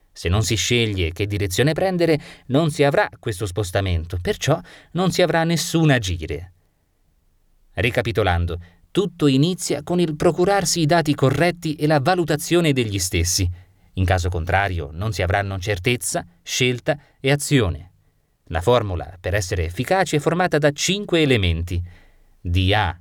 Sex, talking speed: male, 140 wpm